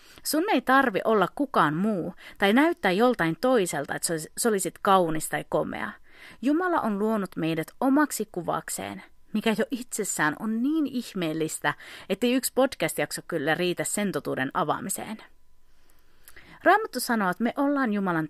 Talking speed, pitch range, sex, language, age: 140 wpm, 165-260 Hz, female, Finnish, 30-49